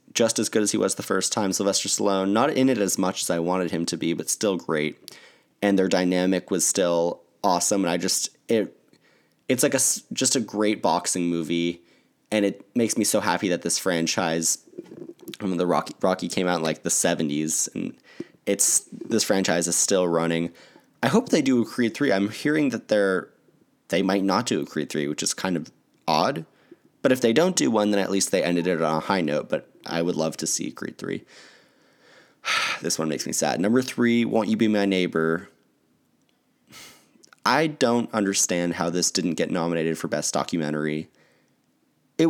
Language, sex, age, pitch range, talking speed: English, male, 20-39, 80-105 Hz, 200 wpm